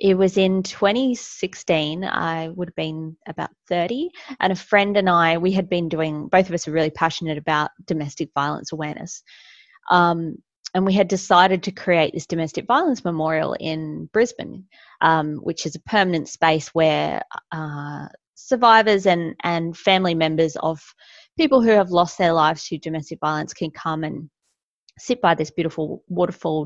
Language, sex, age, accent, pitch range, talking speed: English, female, 20-39, Australian, 165-200 Hz, 165 wpm